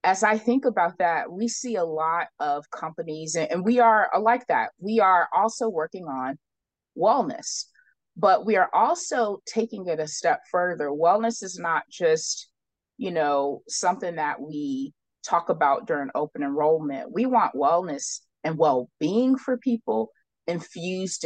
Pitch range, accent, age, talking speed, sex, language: 145-220 Hz, American, 20-39, 150 wpm, female, English